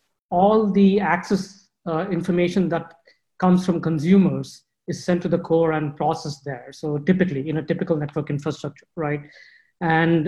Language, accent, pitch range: Chinese, Indian, 160-185 Hz